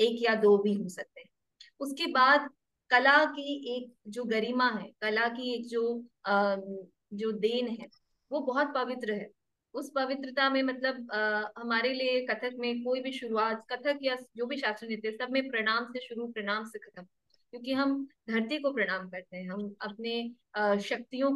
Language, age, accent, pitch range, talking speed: Hindi, 20-39, native, 215-255 Hz, 180 wpm